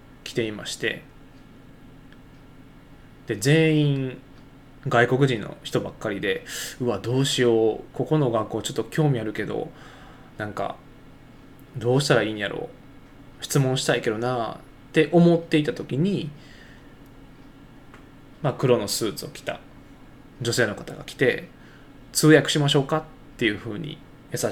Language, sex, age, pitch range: Japanese, male, 20-39, 120-140 Hz